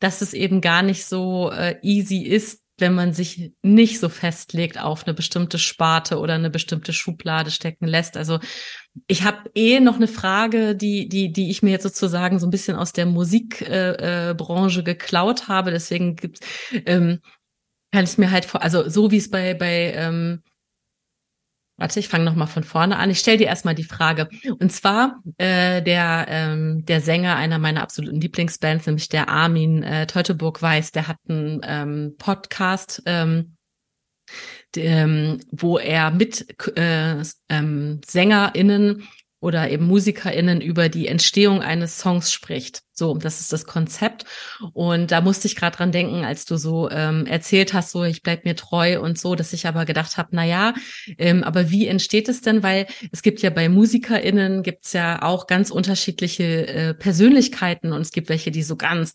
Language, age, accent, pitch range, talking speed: German, 30-49, German, 165-195 Hz, 175 wpm